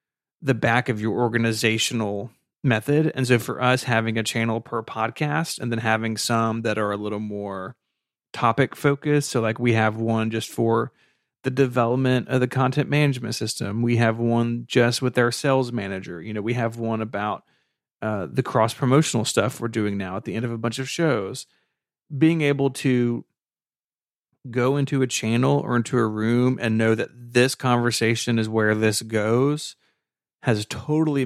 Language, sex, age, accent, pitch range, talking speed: English, male, 30-49, American, 110-130 Hz, 175 wpm